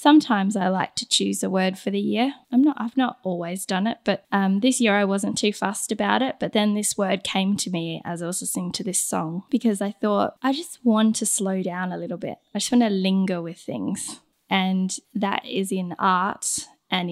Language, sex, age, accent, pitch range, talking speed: English, female, 10-29, Australian, 185-230 Hz, 240 wpm